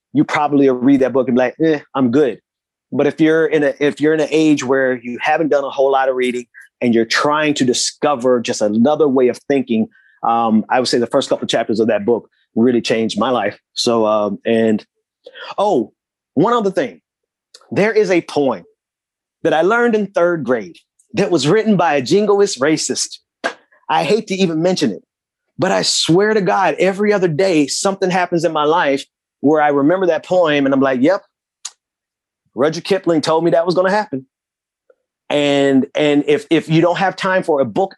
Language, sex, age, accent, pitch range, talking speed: English, male, 30-49, American, 130-175 Hz, 200 wpm